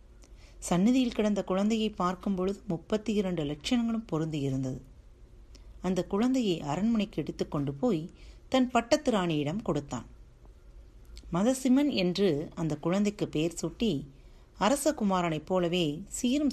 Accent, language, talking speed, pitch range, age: native, Tamil, 95 wpm, 155-220 Hz, 30-49